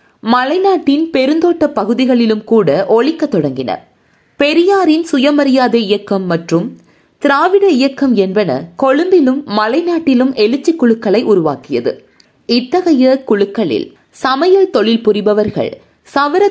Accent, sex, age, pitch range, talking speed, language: native, female, 20-39, 210-300 Hz, 85 wpm, Tamil